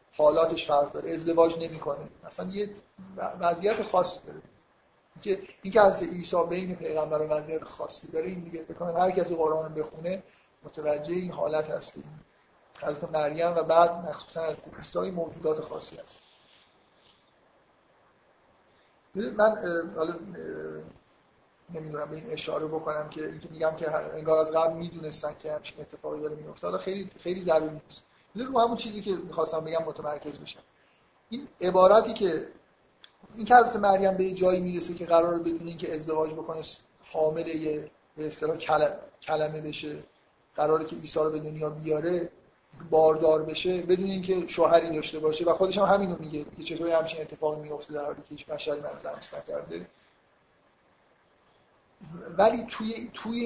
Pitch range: 155-185 Hz